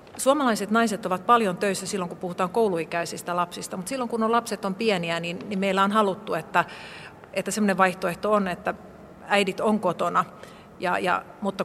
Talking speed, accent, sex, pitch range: 160 wpm, native, female, 175-210 Hz